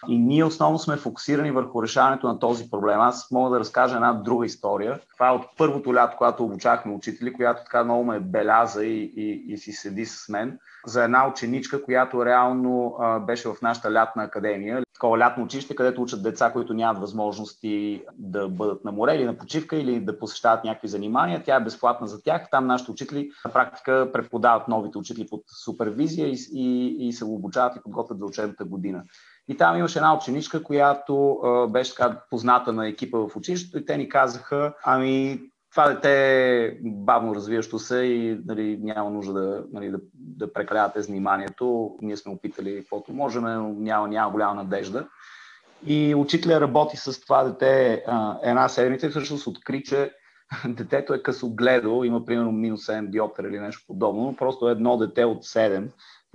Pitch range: 110-130 Hz